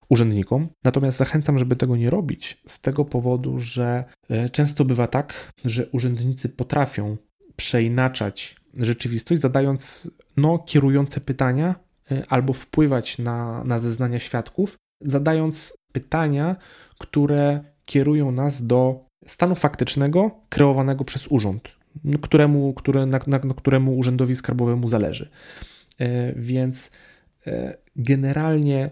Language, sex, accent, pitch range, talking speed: Polish, male, native, 115-135 Hz, 105 wpm